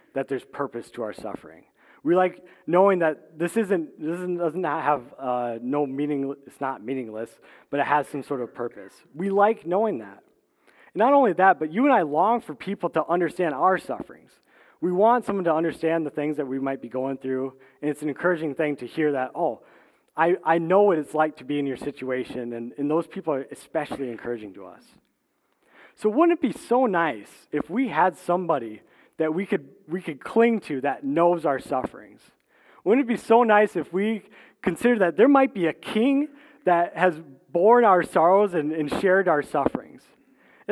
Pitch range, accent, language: 145-195 Hz, American, English